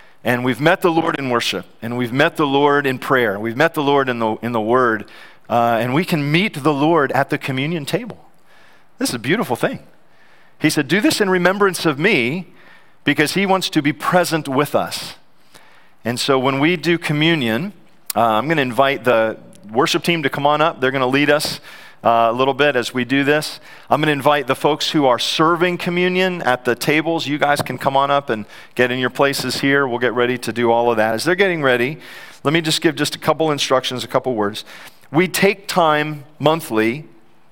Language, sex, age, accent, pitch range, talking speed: English, male, 40-59, American, 125-165 Hz, 220 wpm